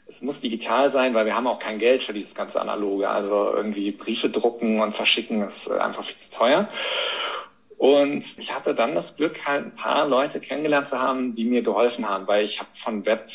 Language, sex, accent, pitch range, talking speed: German, male, German, 115-145 Hz, 210 wpm